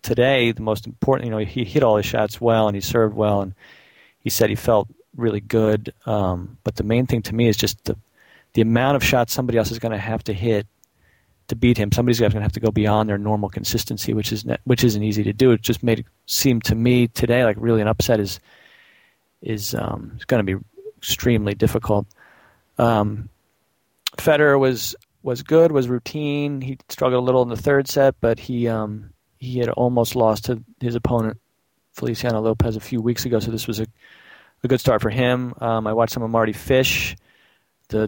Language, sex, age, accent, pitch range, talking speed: English, male, 40-59, American, 105-120 Hz, 210 wpm